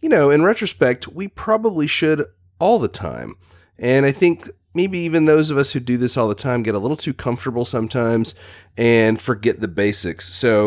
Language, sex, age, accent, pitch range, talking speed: English, male, 30-49, American, 95-130 Hz, 195 wpm